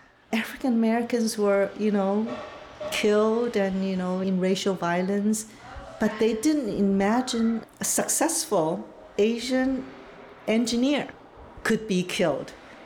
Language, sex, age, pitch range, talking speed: English, female, 50-69, 170-220 Hz, 105 wpm